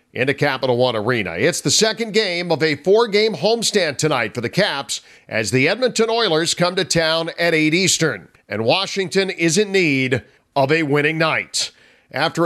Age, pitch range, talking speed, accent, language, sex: 50-69, 150-195 Hz, 175 wpm, American, English, male